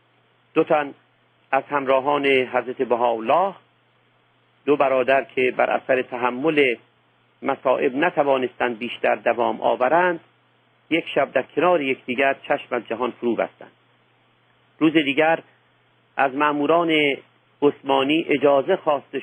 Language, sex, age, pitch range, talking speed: Persian, male, 50-69, 125-155 Hz, 105 wpm